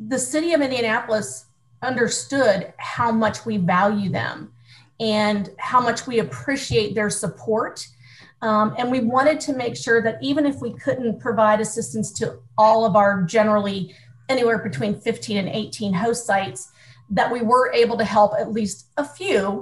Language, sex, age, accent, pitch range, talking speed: English, female, 40-59, American, 195-235 Hz, 160 wpm